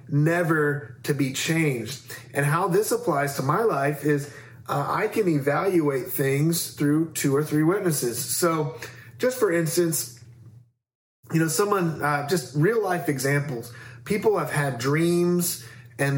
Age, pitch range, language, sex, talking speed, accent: 30-49, 135-175 Hz, English, male, 145 wpm, American